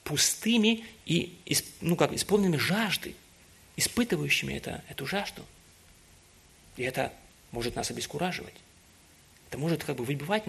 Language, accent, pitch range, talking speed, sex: Russian, native, 140-190 Hz, 110 wpm, male